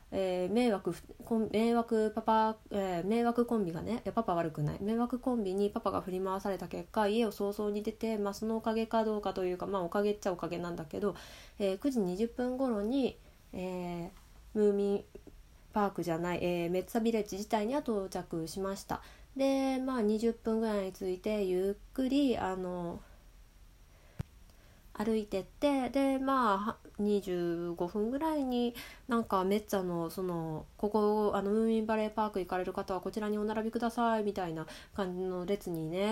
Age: 20-39